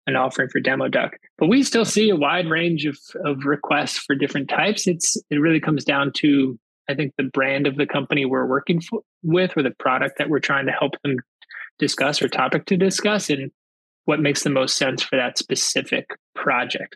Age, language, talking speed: 20-39, English, 210 wpm